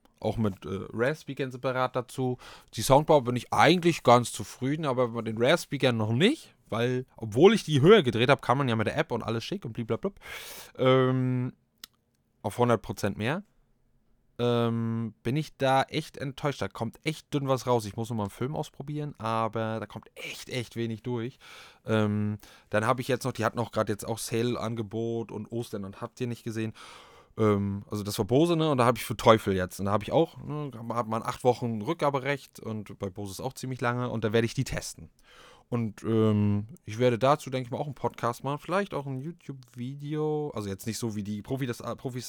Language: German